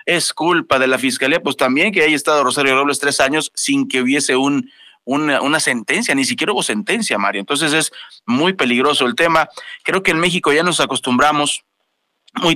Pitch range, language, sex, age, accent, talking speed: 135-190 Hz, Spanish, male, 40-59, Mexican, 185 wpm